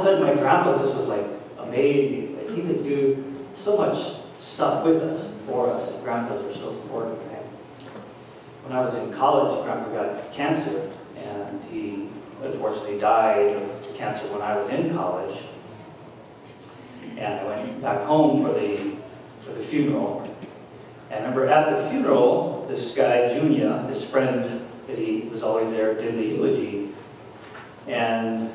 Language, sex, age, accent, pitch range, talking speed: English, male, 40-59, American, 115-150 Hz, 160 wpm